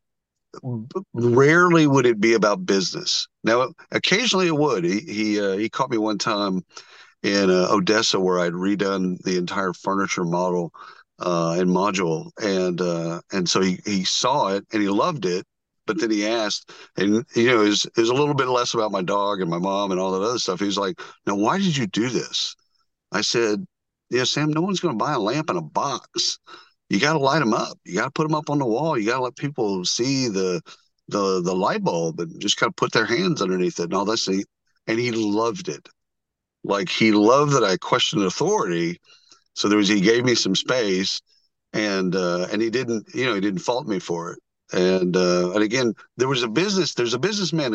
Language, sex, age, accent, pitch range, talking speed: English, male, 50-69, American, 95-125 Hz, 215 wpm